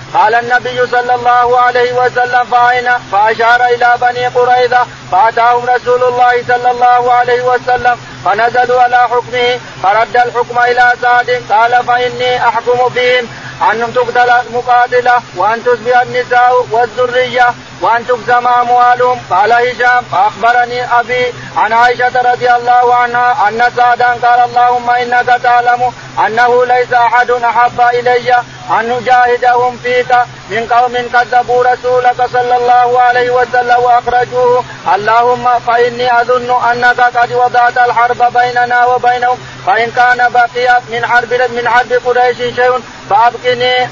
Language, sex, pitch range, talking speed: Arabic, male, 245-250 Hz, 120 wpm